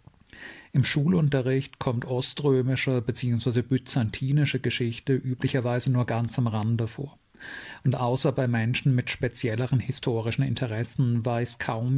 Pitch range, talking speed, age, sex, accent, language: 120-135 Hz, 115 wpm, 40-59, male, German, German